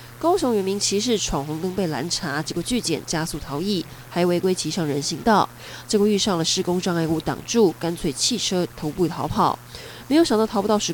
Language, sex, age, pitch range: Chinese, female, 20-39, 165-220 Hz